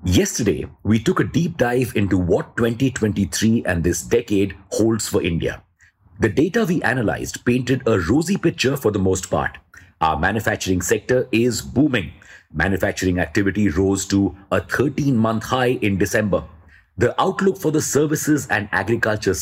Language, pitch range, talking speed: English, 95-125 Hz, 150 wpm